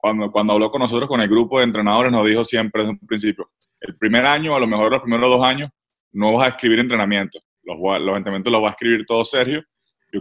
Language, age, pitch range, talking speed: English, 20-39, 115-140 Hz, 235 wpm